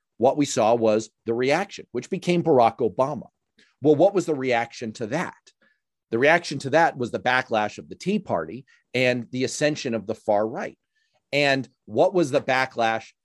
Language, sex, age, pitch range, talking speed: English, male, 40-59, 110-145 Hz, 180 wpm